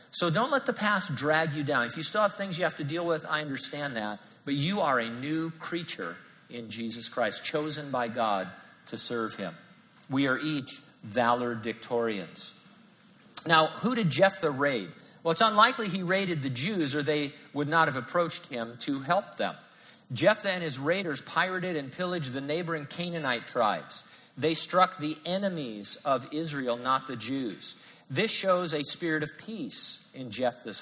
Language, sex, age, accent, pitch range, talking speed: English, male, 50-69, American, 140-180 Hz, 175 wpm